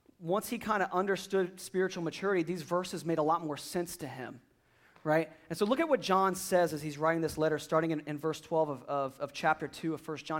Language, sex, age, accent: English, male, 40-59, American